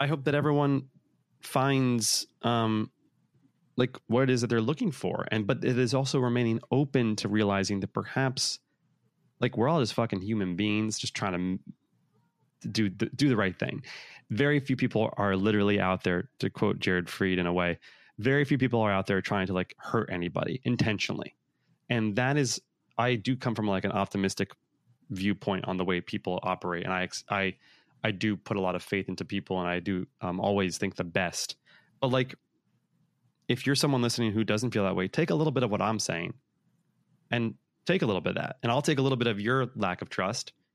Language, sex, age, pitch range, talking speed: English, male, 20-39, 95-130 Hz, 205 wpm